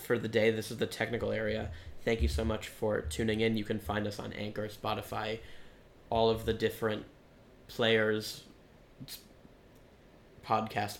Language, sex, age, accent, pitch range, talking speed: English, male, 10-29, American, 105-115 Hz, 155 wpm